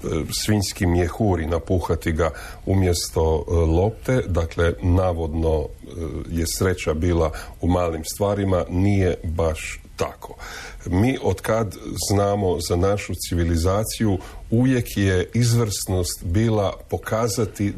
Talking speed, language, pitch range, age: 95 wpm, Croatian, 85-110 Hz, 40-59